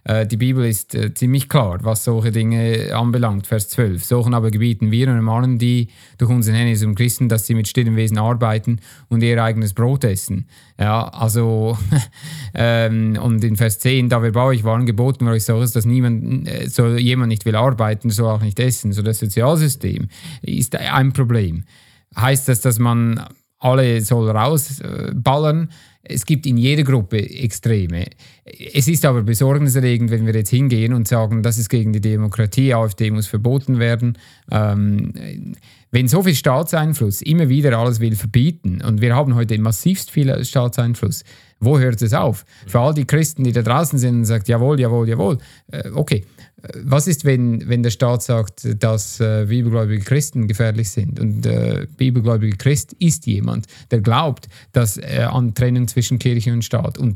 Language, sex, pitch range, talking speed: German, male, 110-130 Hz, 175 wpm